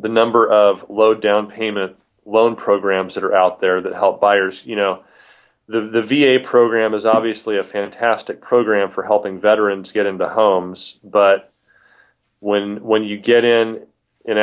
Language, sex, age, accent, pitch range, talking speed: English, male, 30-49, American, 95-110 Hz, 160 wpm